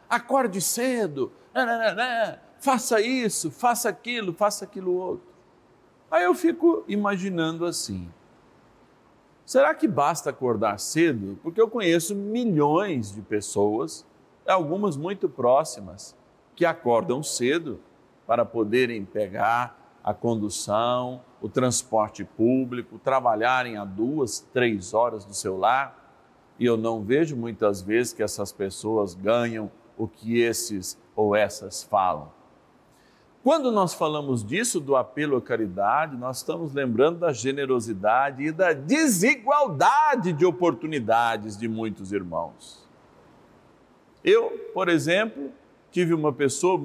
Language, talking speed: Portuguese, 120 wpm